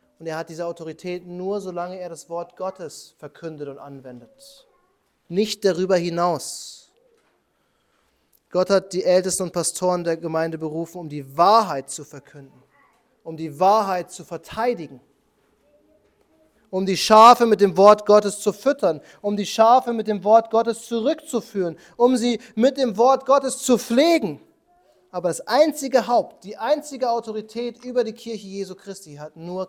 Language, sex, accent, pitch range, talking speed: German, male, German, 150-220 Hz, 150 wpm